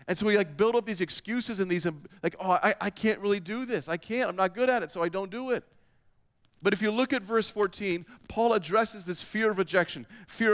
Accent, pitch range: American, 155-210 Hz